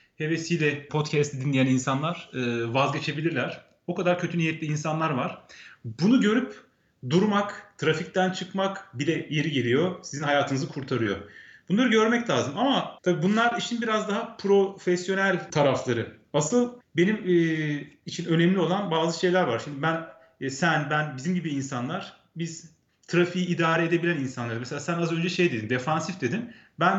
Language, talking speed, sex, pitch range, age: Turkish, 140 wpm, male, 150-195 Hz, 40-59